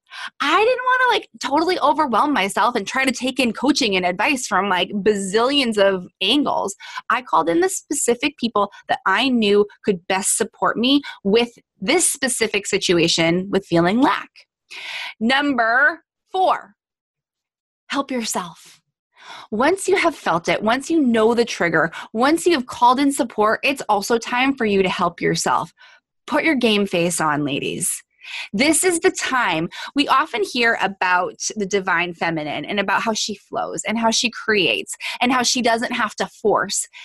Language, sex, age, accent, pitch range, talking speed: English, female, 20-39, American, 205-330 Hz, 165 wpm